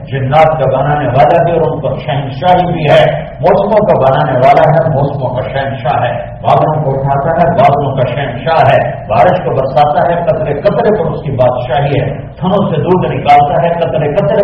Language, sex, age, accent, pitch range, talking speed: English, male, 50-69, Indian, 125-155 Hz, 210 wpm